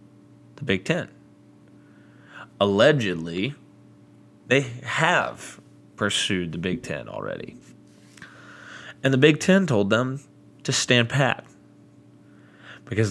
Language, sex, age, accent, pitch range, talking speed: English, male, 20-39, American, 100-130 Hz, 95 wpm